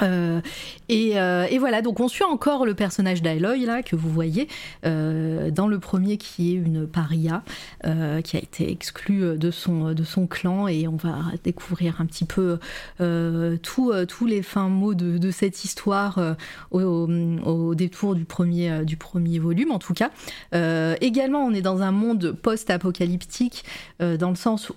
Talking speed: 185 wpm